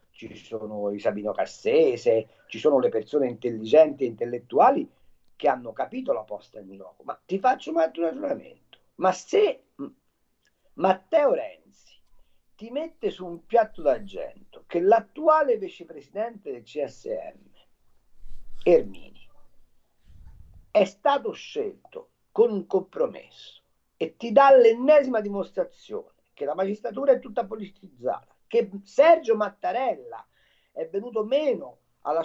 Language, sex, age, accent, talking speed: Italian, male, 50-69, native, 120 wpm